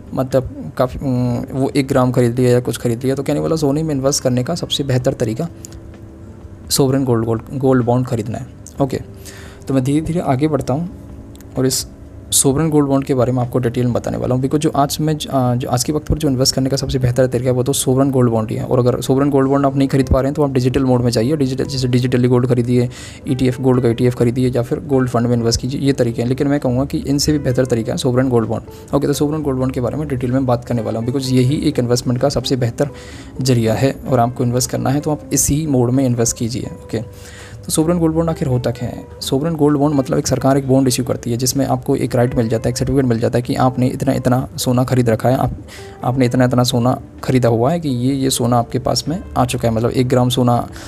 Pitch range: 120-135 Hz